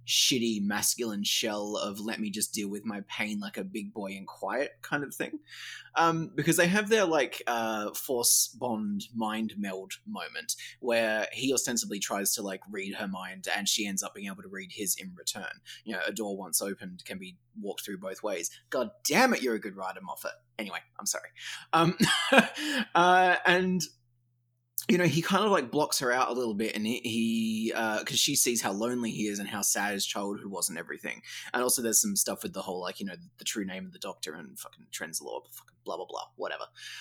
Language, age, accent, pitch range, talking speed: English, 20-39, Australian, 105-145 Hz, 215 wpm